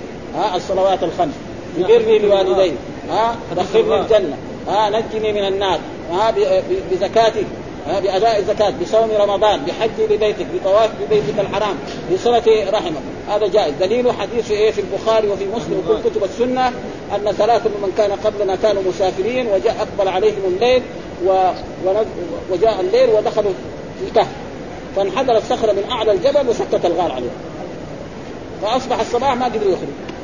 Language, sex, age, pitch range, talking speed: Arabic, male, 40-59, 200-260 Hz, 135 wpm